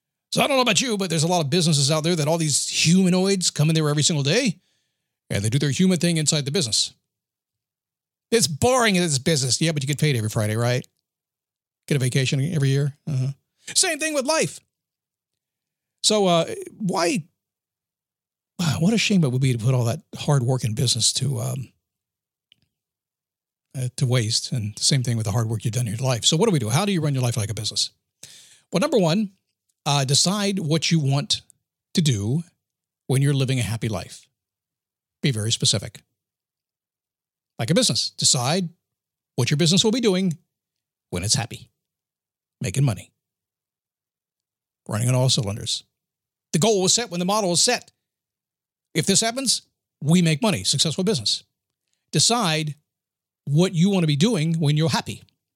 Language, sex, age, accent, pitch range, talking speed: English, male, 50-69, American, 130-180 Hz, 185 wpm